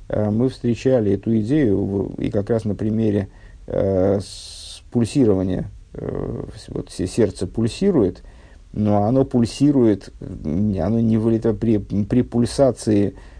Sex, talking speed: male, 110 wpm